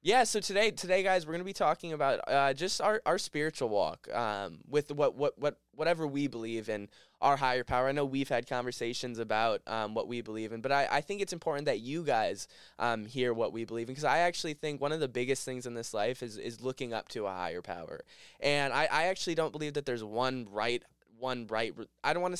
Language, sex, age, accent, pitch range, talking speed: English, male, 10-29, American, 115-150 Hz, 245 wpm